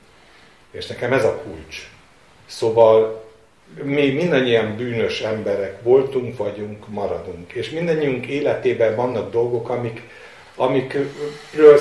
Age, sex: 50-69, male